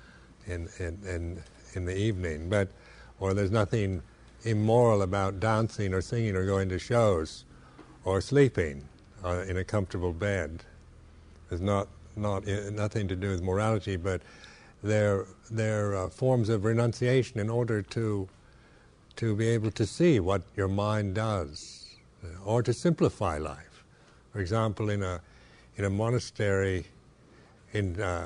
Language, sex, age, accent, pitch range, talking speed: English, male, 60-79, American, 90-110 Hz, 140 wpm